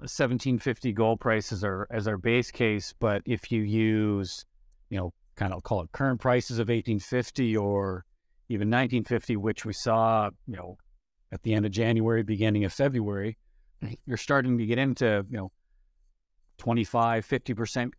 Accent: American